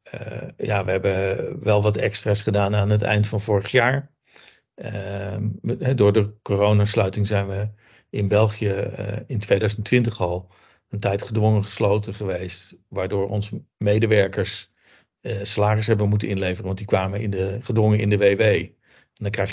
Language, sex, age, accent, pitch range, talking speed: Dutch, male, 50-69, Dutch, 100-115 Hz, 155 wpm